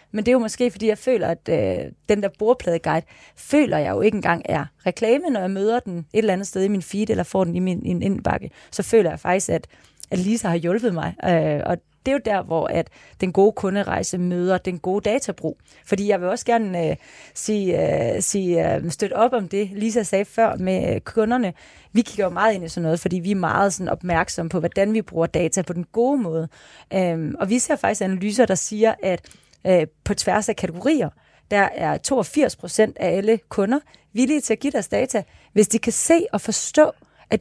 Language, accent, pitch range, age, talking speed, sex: Danish, native, 185-235 Hz, 30-49, 205 wpm, female